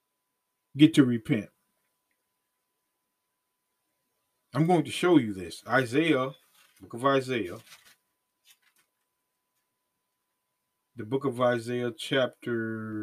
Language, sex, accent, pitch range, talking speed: English, male, American, 115-145 Hz, 90 wpm